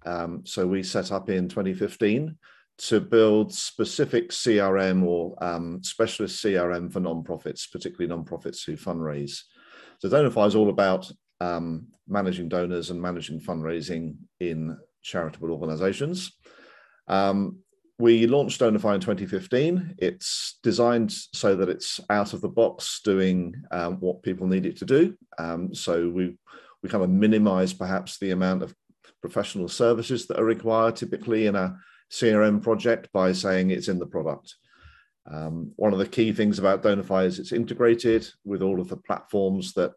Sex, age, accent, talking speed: male, 40-59, British, 155 wpm